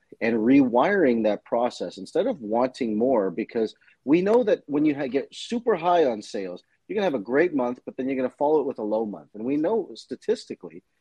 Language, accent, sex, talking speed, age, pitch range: English, American, male, 230 wpm, 30-49, 110-145 Hz